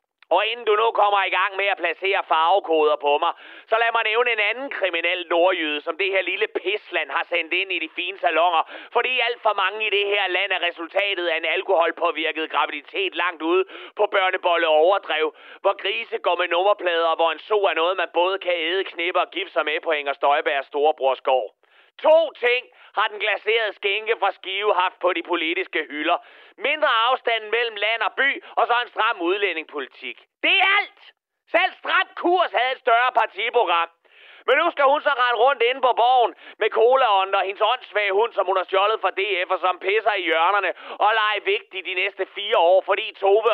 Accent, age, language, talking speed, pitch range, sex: native, 30-49, Danish, 205 wpm, 185-285 Hz, male